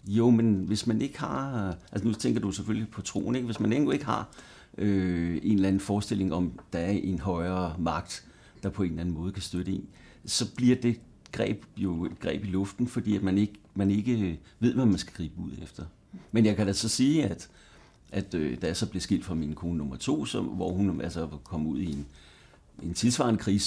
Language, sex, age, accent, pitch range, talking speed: Danish, male, 60-79, native, 90-110 Hz, 210 wpm